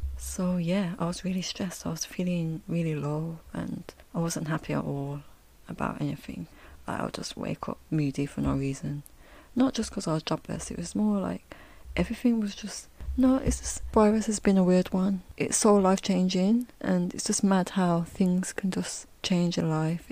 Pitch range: 150-190 Hz